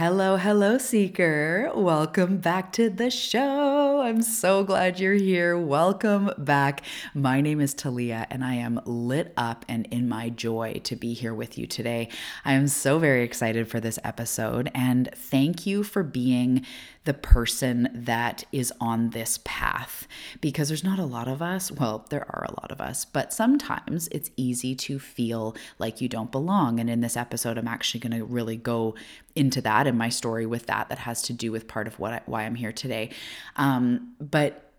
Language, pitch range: English, 115-145 Hz